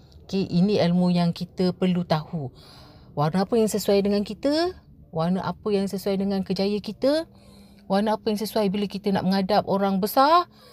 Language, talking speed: Malay, 170 wpm